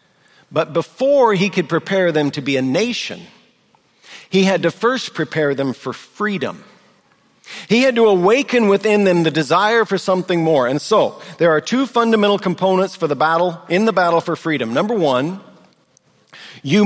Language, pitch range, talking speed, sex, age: English, 145-185 Hz, 165 wpm, male, 50-69